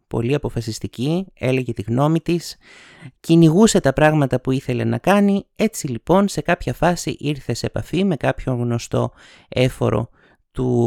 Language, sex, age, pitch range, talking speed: Greek, male, 30-49, 115-165 Hz, 145 wpm